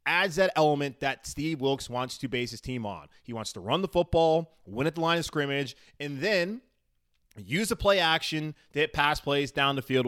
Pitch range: 125-150 Hz